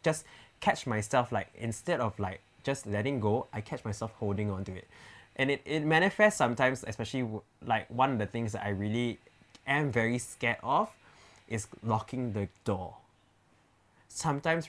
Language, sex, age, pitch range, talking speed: English, male, 20-39, 105-150 Hz, 165 wpm